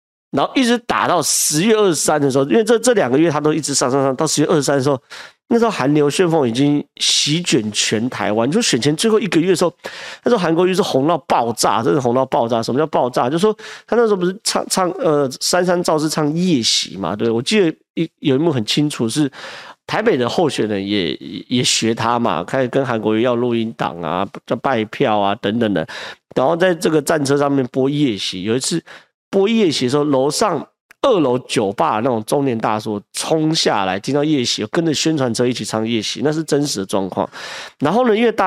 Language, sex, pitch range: Chinese, male, 115-165 Hz